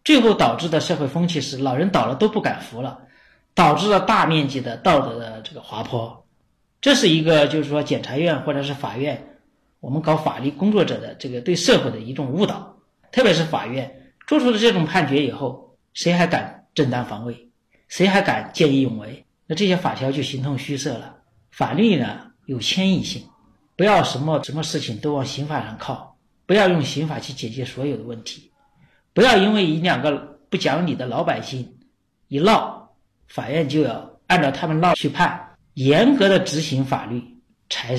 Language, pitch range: Chinese, 130-180 Hz